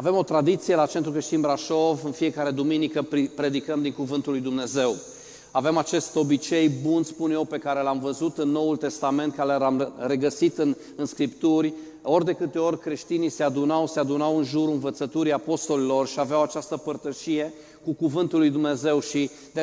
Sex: male